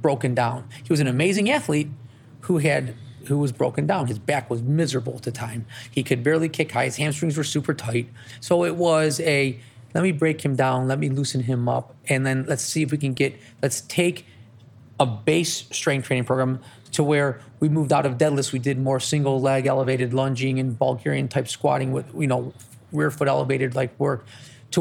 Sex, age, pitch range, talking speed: male, 30-49, 120-145 Hz, 210 wpm